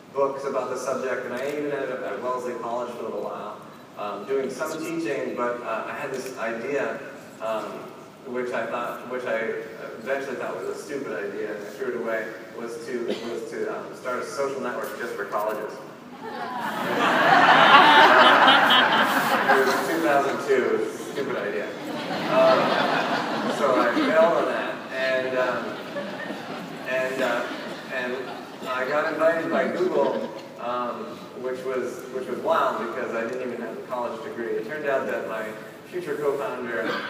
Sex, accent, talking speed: male, American, 155 wpm